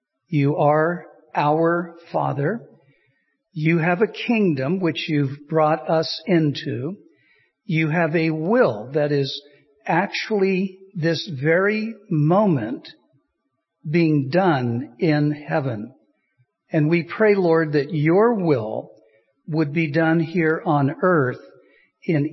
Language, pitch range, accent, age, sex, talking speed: English, 150-180 Hz, American, 60-79, male, 110 wpm